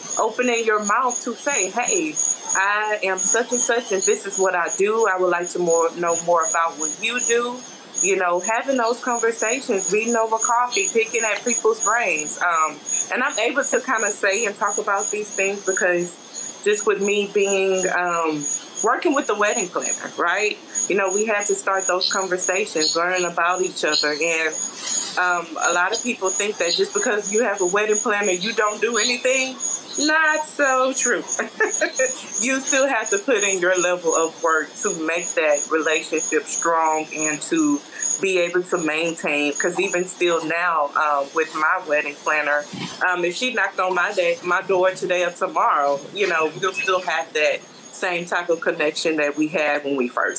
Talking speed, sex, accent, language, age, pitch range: 190 wpm, female, American, English, 20-39, 165-225 Hz